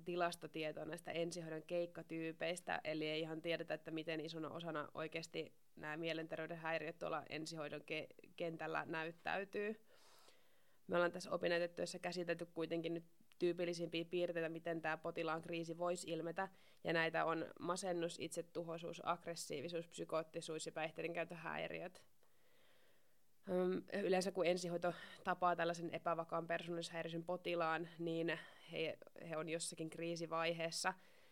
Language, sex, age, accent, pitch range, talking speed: Finnish, female, 20-39, native, 160-175 Hz, 115 wpm